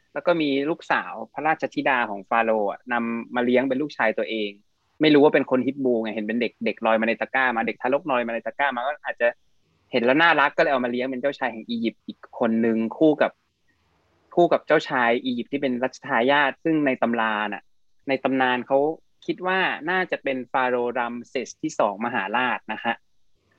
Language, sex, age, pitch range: Thai, male, 20-39, 115-140 Hz